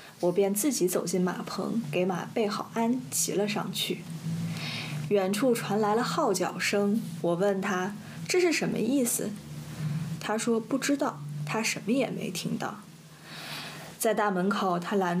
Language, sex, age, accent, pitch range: Chinese, female, 20-39, native, 170-235 Hz